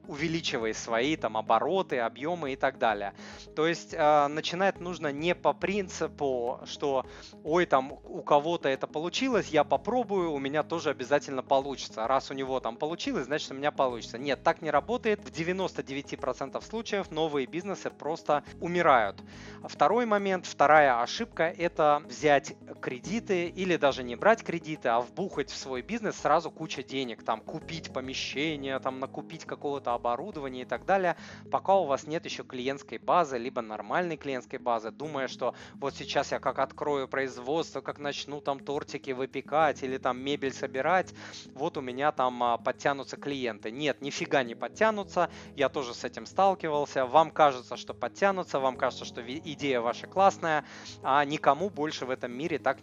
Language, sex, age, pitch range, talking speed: Russian, male, 30-49, 130-165 Hz, 160 wpm